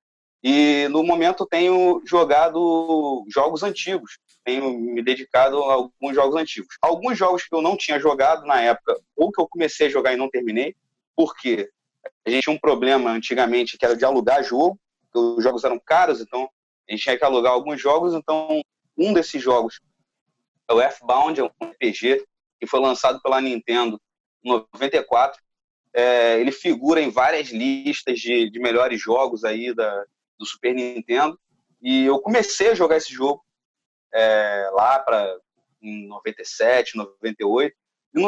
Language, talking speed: Portuguese, 160 wpm